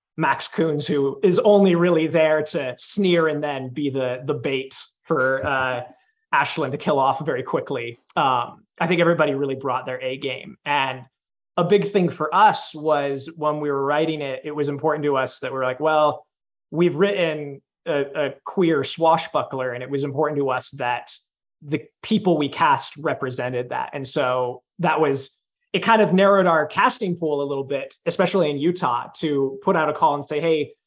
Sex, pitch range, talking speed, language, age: male, 135-170 Hz, 190 wpm, English, 20-39